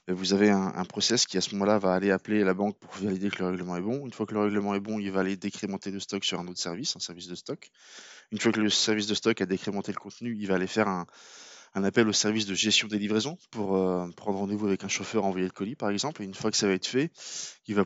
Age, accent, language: 20-39, French, French